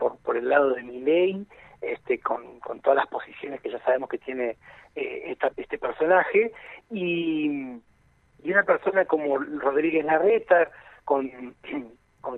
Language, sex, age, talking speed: Spanish, male, 40-59, 145 wpm